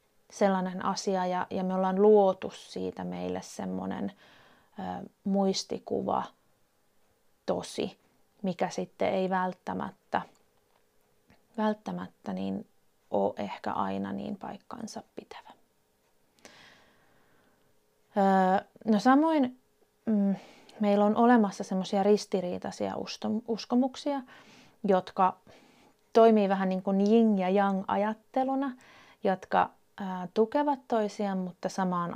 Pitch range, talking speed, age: 175-210 Hz, 90 wpm, 30-49